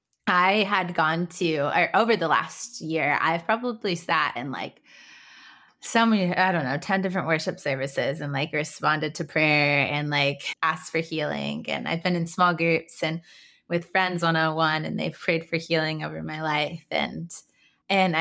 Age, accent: 20-39, American